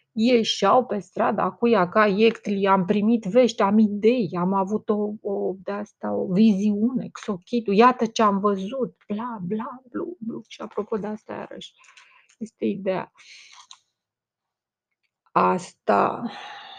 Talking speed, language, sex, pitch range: 130 wpm, Romanian, female, 180-230 Hz